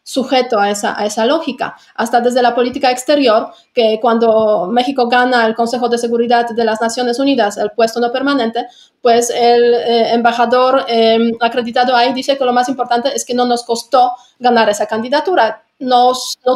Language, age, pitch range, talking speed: Spanish, 30-49, 225-250 Hz, 180 wpm